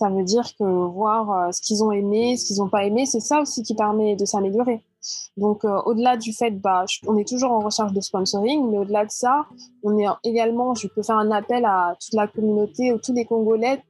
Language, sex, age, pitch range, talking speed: French, female, 20-39, 200-240 Hz, 240 wpm